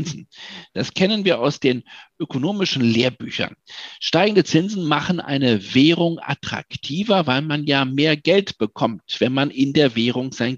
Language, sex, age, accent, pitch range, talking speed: German, male, 50-69, German, 135-180 Hz, 140 wpm